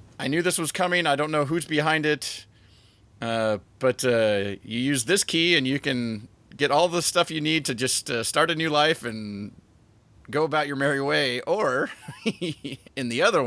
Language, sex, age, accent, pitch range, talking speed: English, male, 30-49, American, 110-150 Hz, 195 wpm